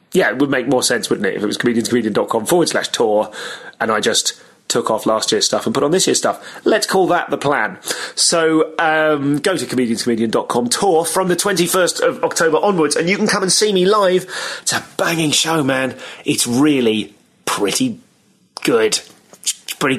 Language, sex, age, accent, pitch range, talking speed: English, male, 30-49, British, 125-165 Hz, 190 wpm